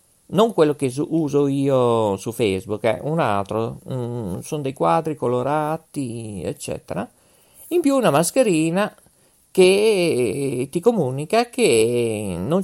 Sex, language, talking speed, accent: male, Italian, 120 wpm, native